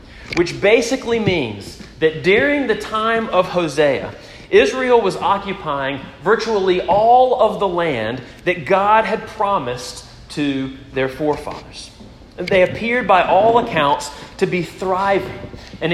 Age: 30-49